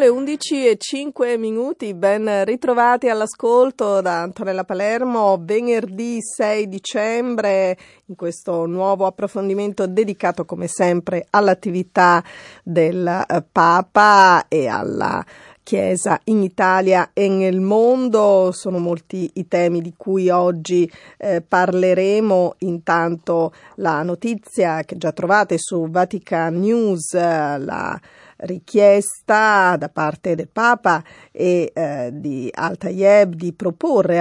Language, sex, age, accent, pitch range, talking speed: Italian, female, 40-59, native, 170-205 Hz, 105 wpm